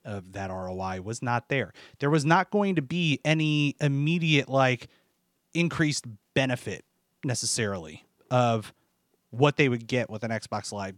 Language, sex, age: English, male, 30-49